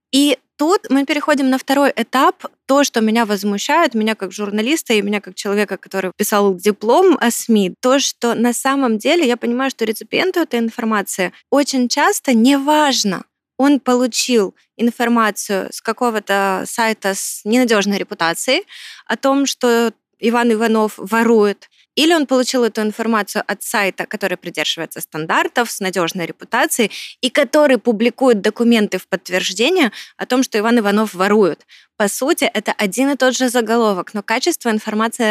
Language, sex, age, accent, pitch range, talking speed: Ukrainian, female, 20-39, native, 205-255 Hz, 150 wpm